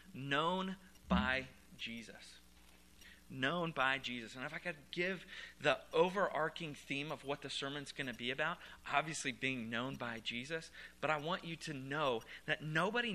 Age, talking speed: 30-49, 160 wpm